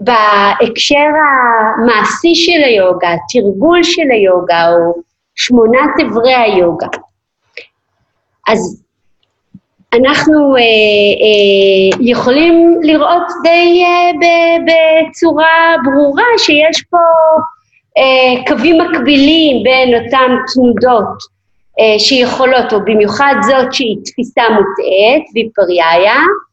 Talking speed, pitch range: 90 wpm, 225-310 Hz